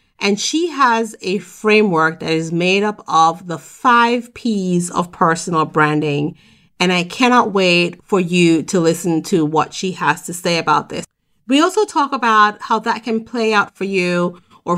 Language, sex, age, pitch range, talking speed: English, female, 40-59, 155-200 Hz, 180 wpm